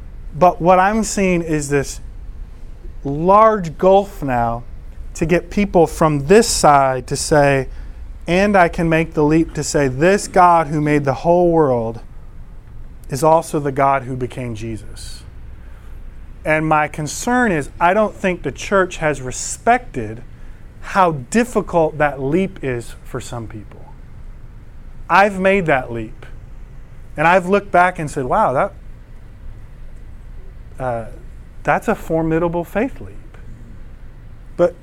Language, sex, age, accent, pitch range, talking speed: English, male, 30-49, American, 120-180 Hz, 135 wpm